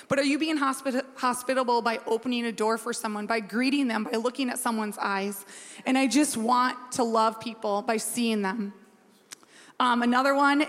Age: 20-39